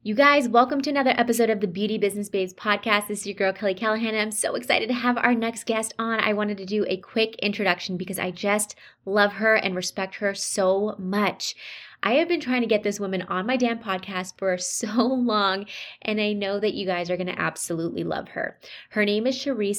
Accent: American